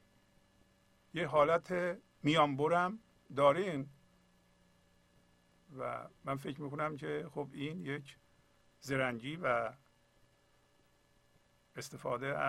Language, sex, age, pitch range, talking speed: Persian, male, 50-69, 130-160 Hz, 75 wpm